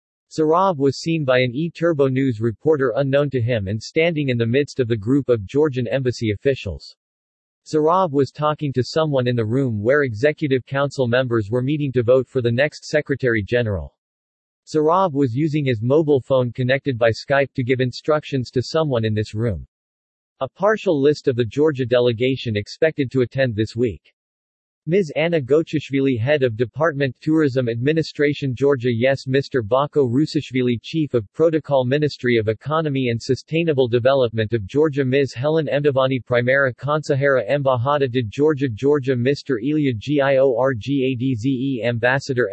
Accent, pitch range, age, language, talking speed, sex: American, 125-145 Hz, 40-59, English, 155 wpm, male